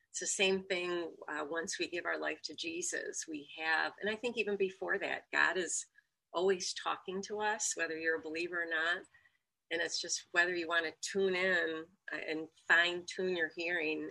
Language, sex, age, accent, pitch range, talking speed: English, female, 40-59, American, 145-185 Hz, 195 wpm